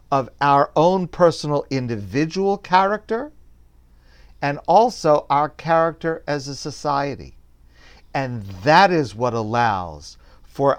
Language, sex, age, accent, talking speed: English, male, 50-69, American, 105 wpm